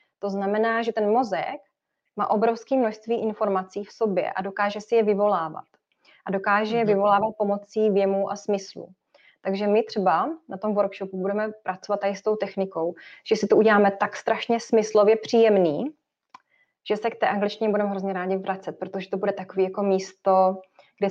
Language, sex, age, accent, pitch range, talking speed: Czech, female, 20-39, native, 185-210 Hz, 170 wpm